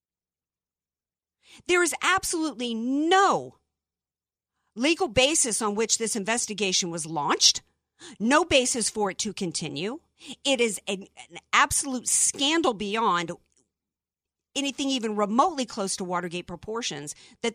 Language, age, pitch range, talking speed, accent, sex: English, 50-69, 170-225 Hz, 110 wpm, American, female